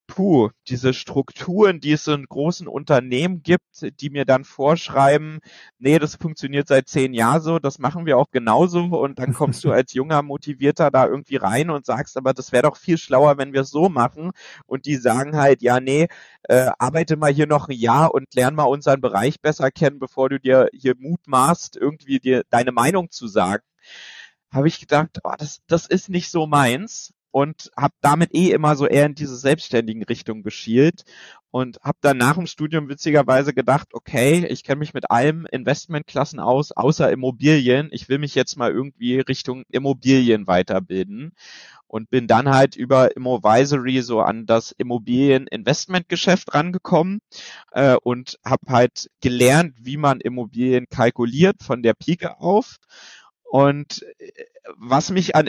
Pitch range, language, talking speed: 125-155 Hz, German, 165 wpm